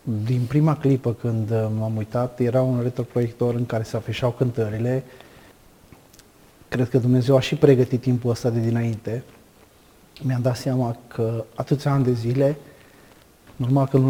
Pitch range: 120-145 Hz